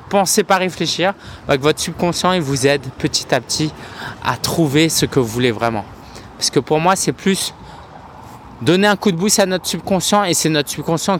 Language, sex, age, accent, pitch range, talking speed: French, male, 20-39, French, 130-180 Hz, 205 wpm